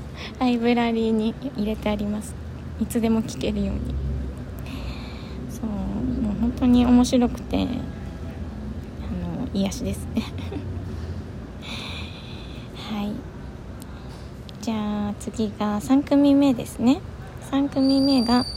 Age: 20-39